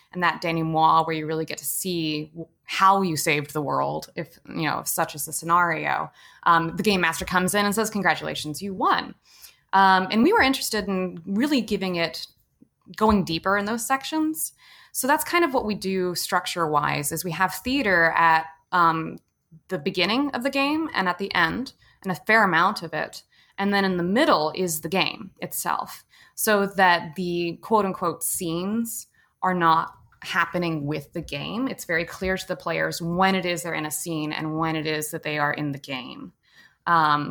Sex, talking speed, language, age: female, 195 wpm, English, 20-39